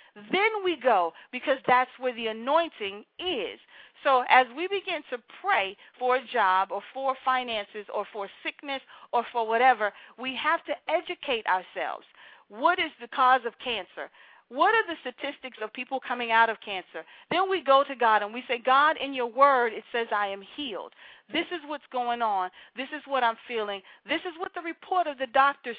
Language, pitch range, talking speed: English, 230-320 Hz, 195 wpm